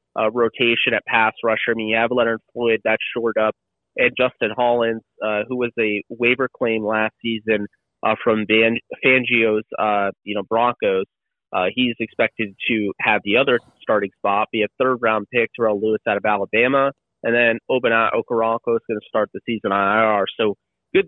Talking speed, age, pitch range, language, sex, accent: 180 wpm, 30-49, 105-120 Hz, English, male, American